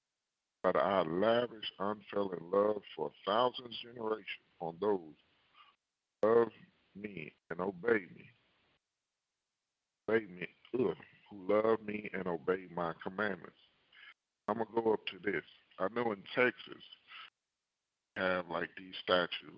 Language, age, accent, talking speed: English, 50-69, American, 125 wpm